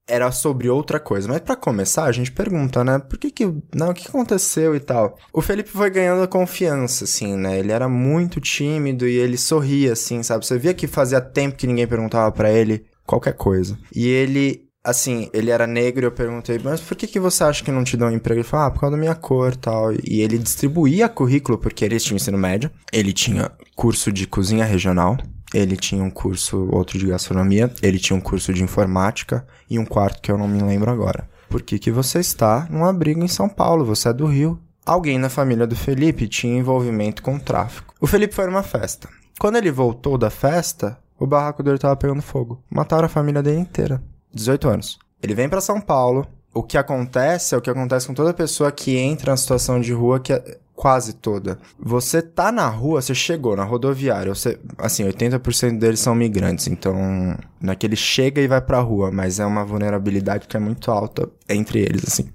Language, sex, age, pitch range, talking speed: Portuguese, male, 10-29, 110-150 Hz, 215 wpm